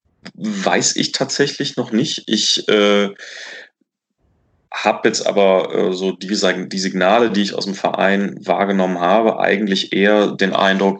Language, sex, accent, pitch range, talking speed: German, male, German, 95-110 Hz, 135 wpm